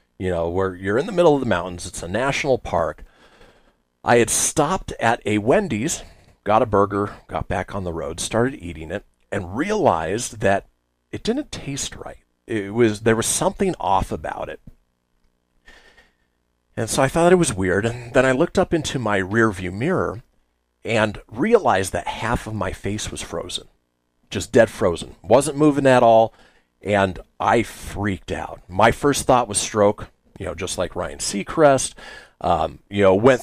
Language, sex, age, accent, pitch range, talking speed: English, male, 40-59, American, 85-120 Hz, 175 wpm